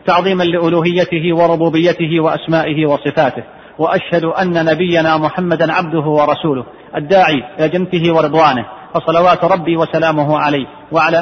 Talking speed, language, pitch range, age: 100 wpm, Arabic, 175-240 Hz, 40-59